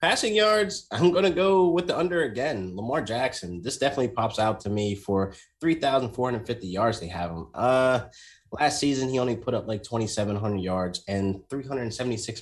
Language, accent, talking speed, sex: English, American, 175 wpm, male